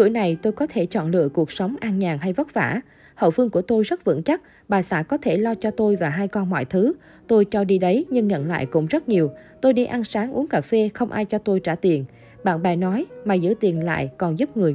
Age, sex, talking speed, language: 20-39, female, 270 wpm, Vietnamese